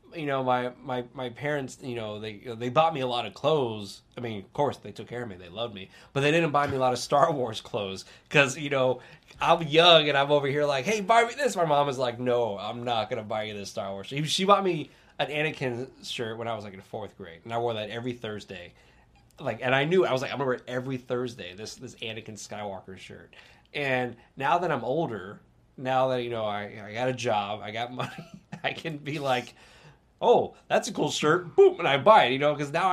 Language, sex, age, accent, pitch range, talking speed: English, male, 20-39, American, 115-145 Hz, 255 wpm